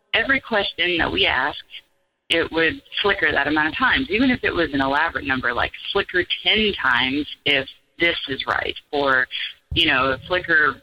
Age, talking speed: 30-49, 170 wpm